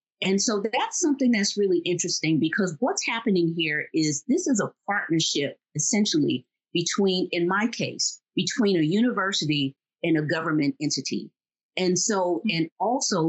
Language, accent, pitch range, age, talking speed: English, American, 155-210 Hz, 40-59, 145 wpm